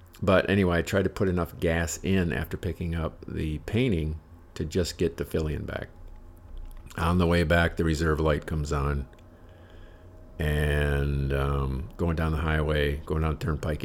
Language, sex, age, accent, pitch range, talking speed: English, male, 50-69, American, 75-85 Hz, 170 wpm